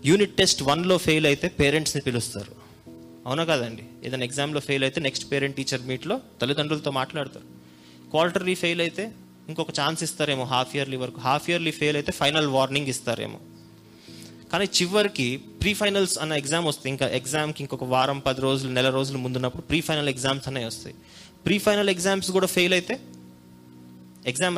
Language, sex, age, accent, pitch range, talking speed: Telugu, male, 20-39, native, 120-155 Hz, 160 wpm